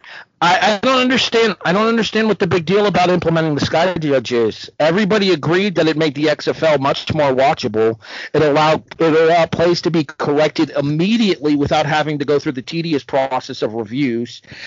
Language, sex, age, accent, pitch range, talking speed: English, male, 50-69, American, 150-195 Hz, 185 wpm